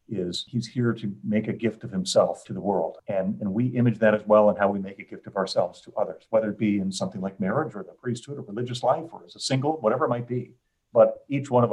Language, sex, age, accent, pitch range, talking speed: English, male, 50-69, American, 105-130 Hz, 275 wpm